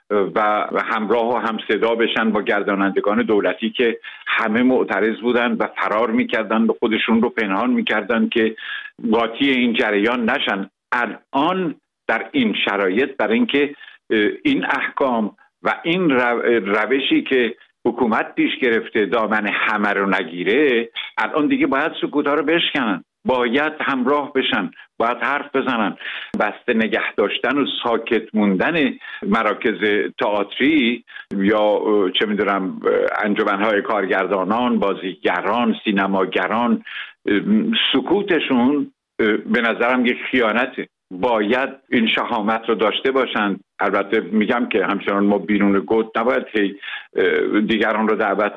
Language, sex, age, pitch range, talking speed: Persian, male, 70-89, 105-145 Hz, 115 wpm